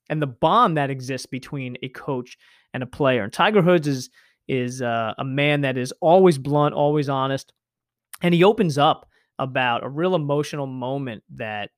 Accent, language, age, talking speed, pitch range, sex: American, English, 20-39, 180 wpm, 130-160 Hz, male